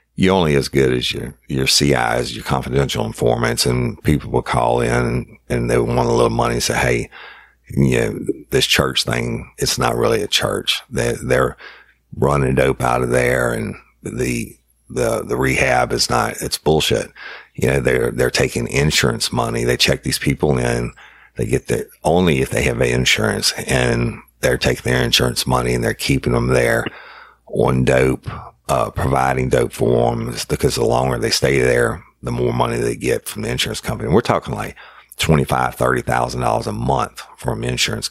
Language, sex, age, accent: English, male, 50-69, American